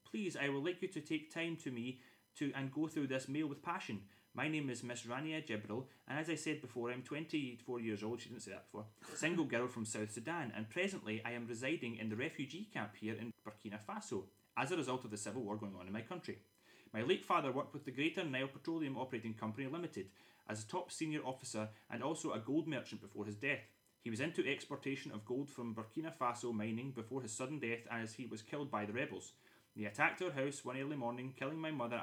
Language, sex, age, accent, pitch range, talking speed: English, male, 30-49, British, 110-145 Hz, 230 wpm